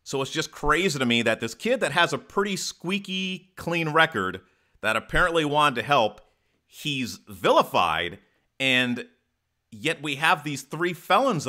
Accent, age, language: American, 30-49, English